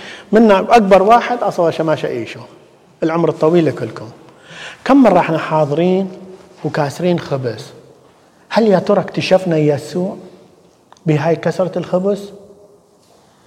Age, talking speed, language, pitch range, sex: 50-69, 100 wpm, English, 145-190 Hz, male